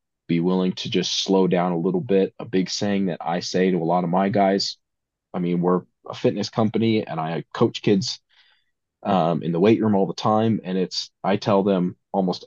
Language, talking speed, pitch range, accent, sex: English, 215 wpm, 90-110 Hz, American, male